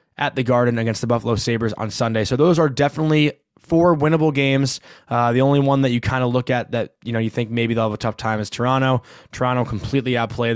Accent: American